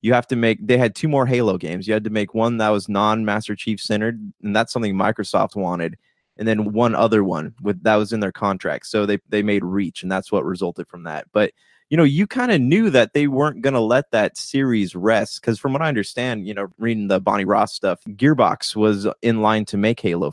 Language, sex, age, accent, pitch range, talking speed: English, male, 20-39, American, 100-120 Hz, 240 wpm